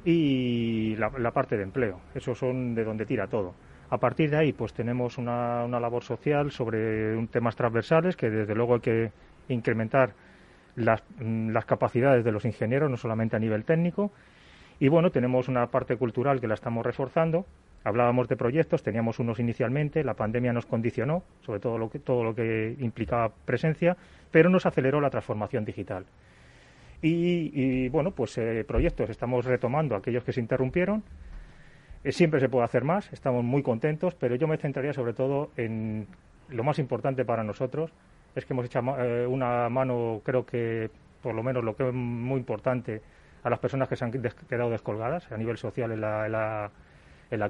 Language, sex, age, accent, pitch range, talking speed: Spanish, male, 30-49, Spanish, 115-135 Hz, 180 wpm